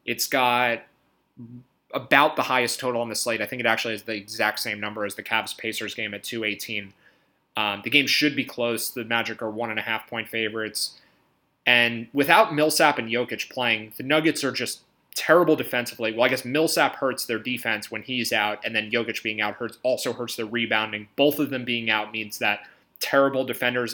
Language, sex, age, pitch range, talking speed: English, male, 20-39, 110-130 Hz, 190 wpm